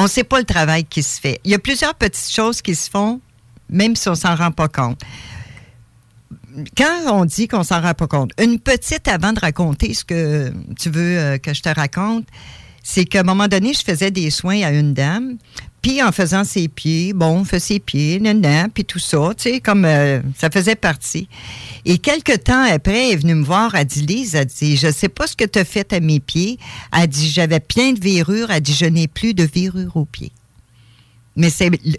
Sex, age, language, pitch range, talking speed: female, 50-69, French, 145-200 Hz, 235 wpm